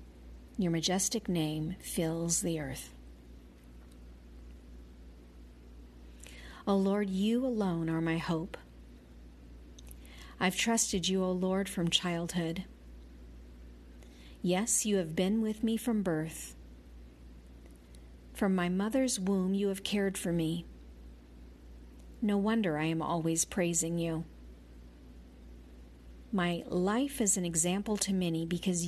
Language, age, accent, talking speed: English, 40-59, American, 110 wpm